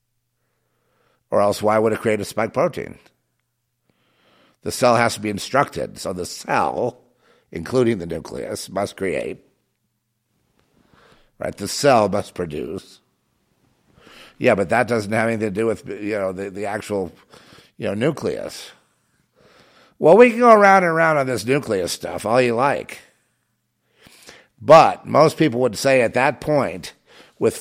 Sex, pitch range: male, 105-130 Hz